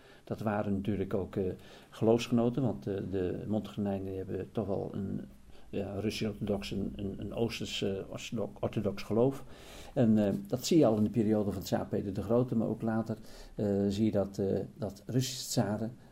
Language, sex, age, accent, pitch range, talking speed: Dutch, male, 50-69, Dutch, 100-120 Hz, 170 wpm